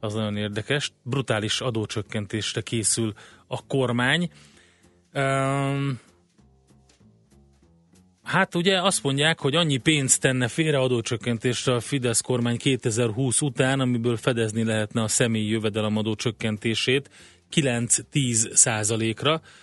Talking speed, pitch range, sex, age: 100 wpm, 110-130 Hz, male, 30-49